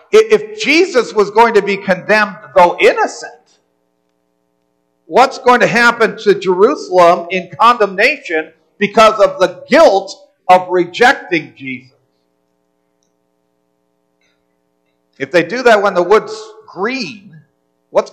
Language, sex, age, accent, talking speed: English, male, 50-69, American, 110 wpm